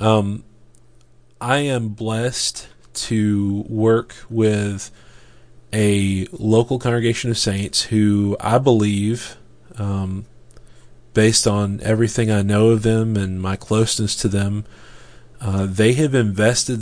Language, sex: English, male